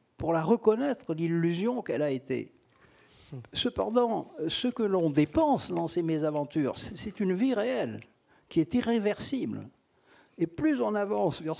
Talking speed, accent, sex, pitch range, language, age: 140 wpm, French, male, 135-195 Hz, French, 50-69